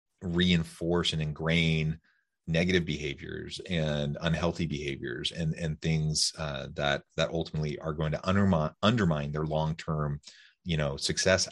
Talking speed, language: 130 wpm, English